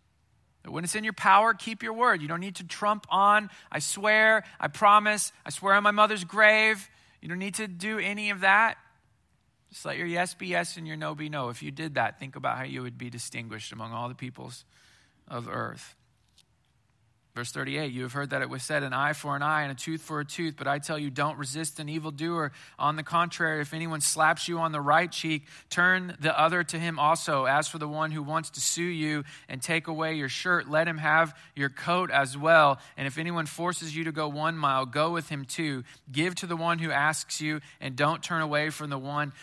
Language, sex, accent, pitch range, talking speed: English, male, American, 135-185 Hz, 235 wpm